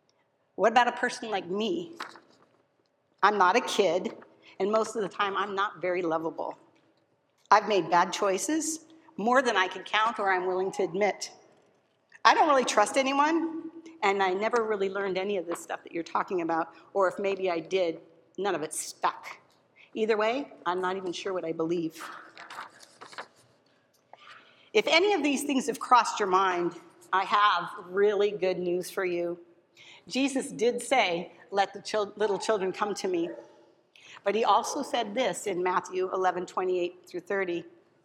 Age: 50-69